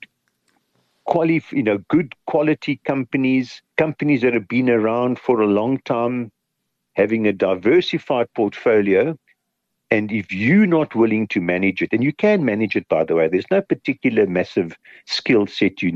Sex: male